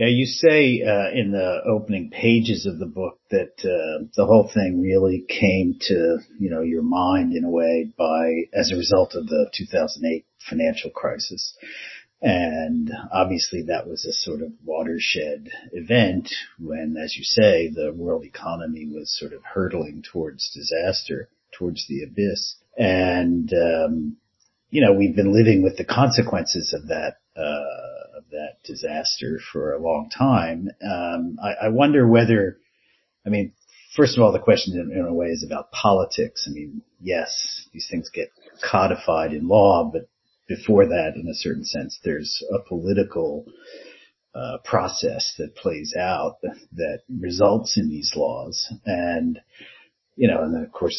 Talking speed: 155 wpm